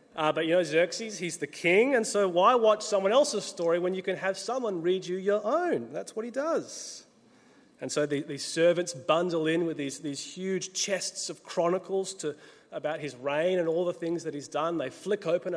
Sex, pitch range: male, 155-230 Hz